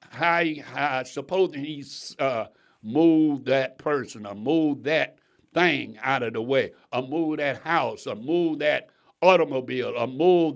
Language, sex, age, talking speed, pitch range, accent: English, male, 60-79, 160 wpm, 150-210 Hz, American